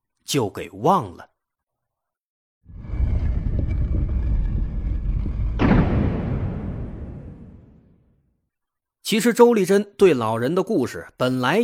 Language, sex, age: Chinese, male, 30-49